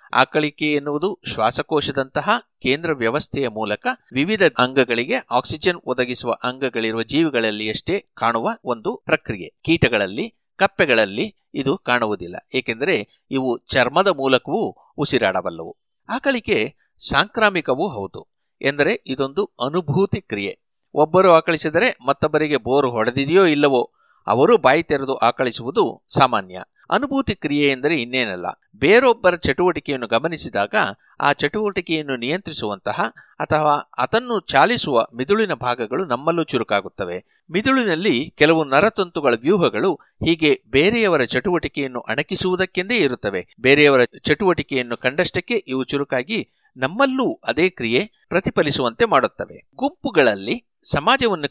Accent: native